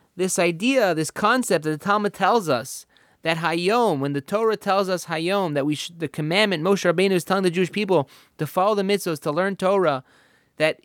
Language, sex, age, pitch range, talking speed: English, male, 30-49, 150-215 Hz, 205 wpm